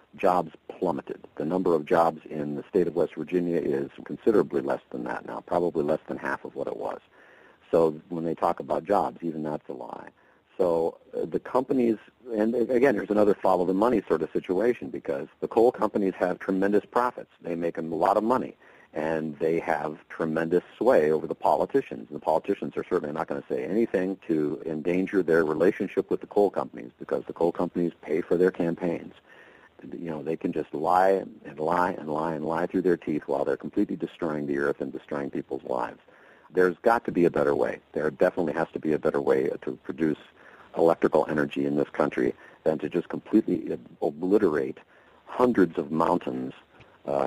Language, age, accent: English, 50-69, American